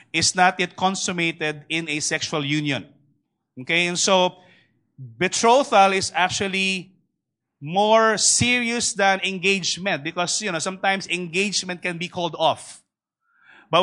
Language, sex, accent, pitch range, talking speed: English, male, Filipino, 160-210 Hz, 120 wpm